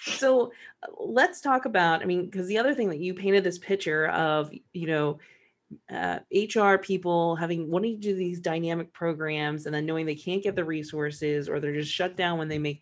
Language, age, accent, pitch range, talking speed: English, 30-49, American, 155-195 Hz, 205 wpm